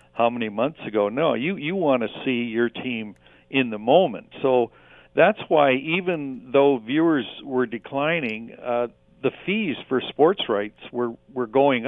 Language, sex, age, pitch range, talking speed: English, male, 60-79, 110-135 Hz, 160 wpm